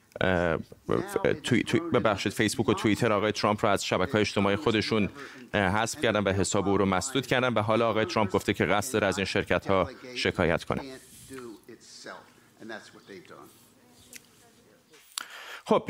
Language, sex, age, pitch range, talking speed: Persian, male, 30-49, 105-130 Hz, 130 wpm